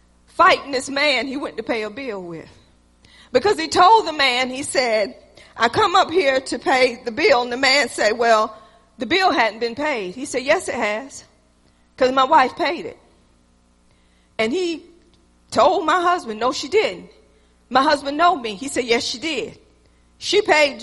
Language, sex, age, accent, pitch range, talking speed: English, female, 40-59, American, 235-345 Hz, 180 wpm